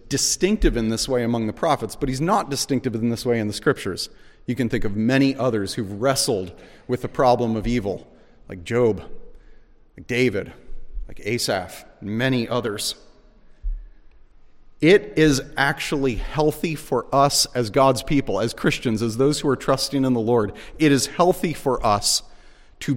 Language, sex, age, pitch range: English, male, 40-59, 120-180 Hz